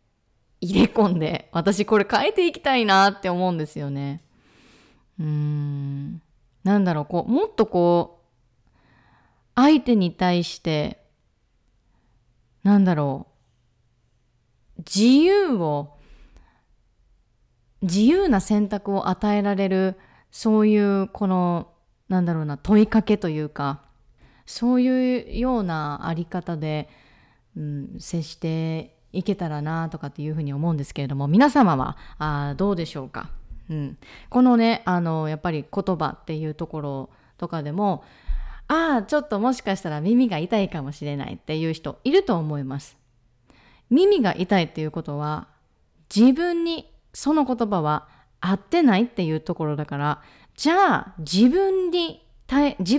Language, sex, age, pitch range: Japanese, female, 20-39, 145-220 Hz